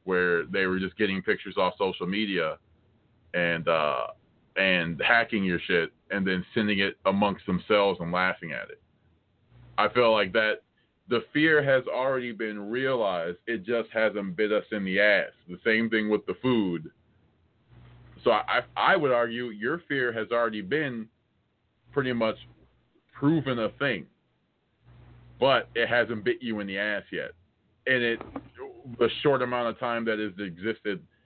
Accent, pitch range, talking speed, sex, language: American, 105-120 Hz, 160 wpm, male, English